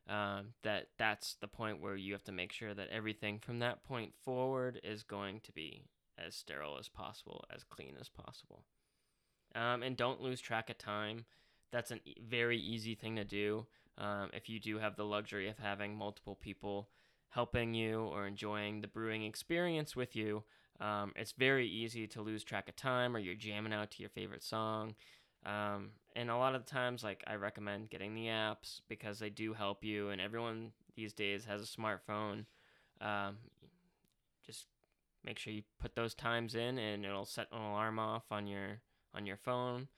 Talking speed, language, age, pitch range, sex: 190 wpm, English, 10-29, 100-115 Hz, male